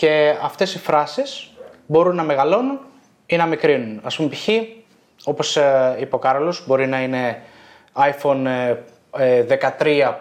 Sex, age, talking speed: male, 20-39, 130 wpm